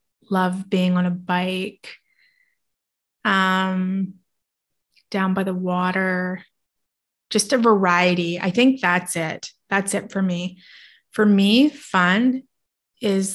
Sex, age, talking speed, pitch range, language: female, 20-39, 110 wpm, 180-210 Hz, English